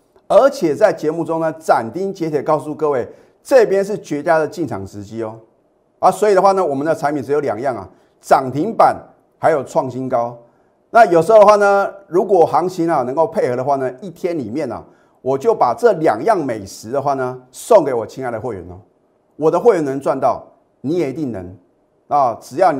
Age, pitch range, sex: 30-49, 130-205 Hz, male